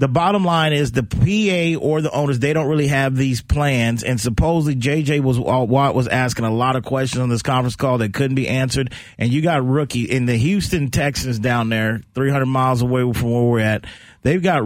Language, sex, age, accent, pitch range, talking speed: English, male, 40-59, American, 115-140 Hz, 220 wpm